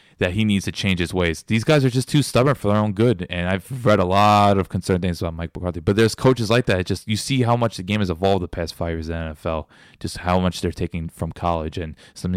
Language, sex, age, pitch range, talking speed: English, male, 20-39, 85-120 Hz, 290 wpm